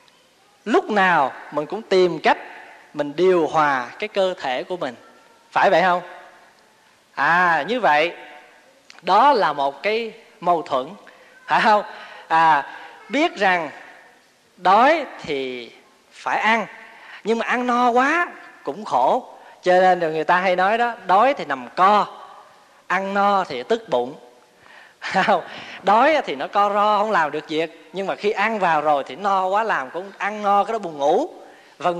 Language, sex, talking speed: Vietnamese, male, 160 wpm